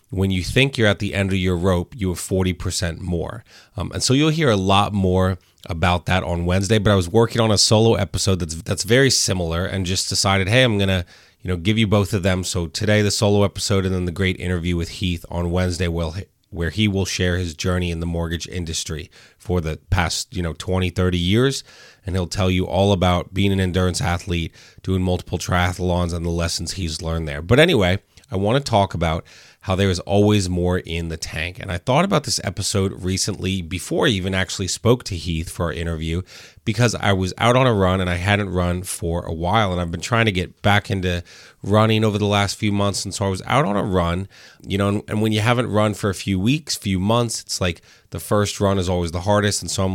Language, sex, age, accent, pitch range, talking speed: English, male, 30-49, American, 90-105 Hz, 235 wpm